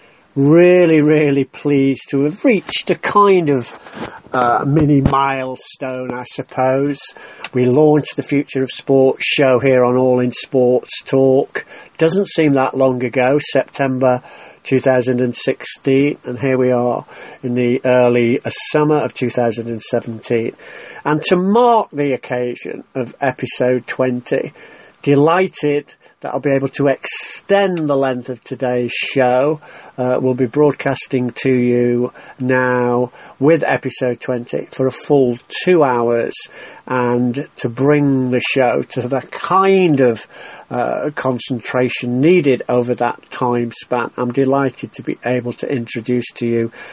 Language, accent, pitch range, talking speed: English, British, 125-145 Hz, 135 wpm